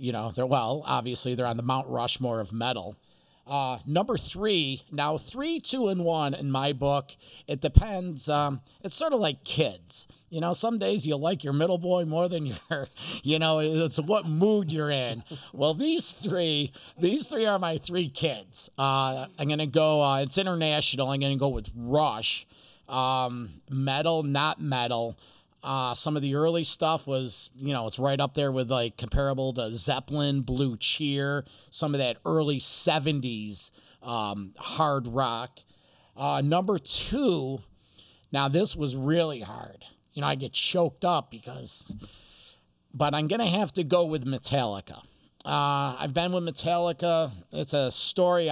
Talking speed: 170 wpm